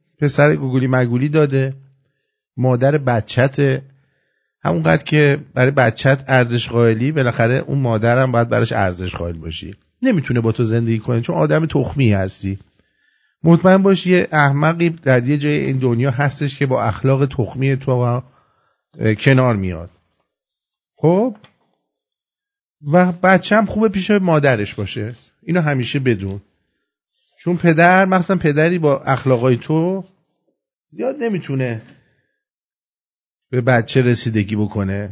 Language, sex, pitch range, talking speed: English, male, 125-185 Hz, 120 wpm